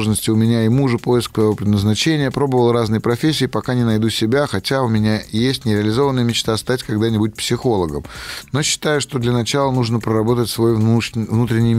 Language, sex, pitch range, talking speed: Russian, male, 100-125 Hz, 165 wpm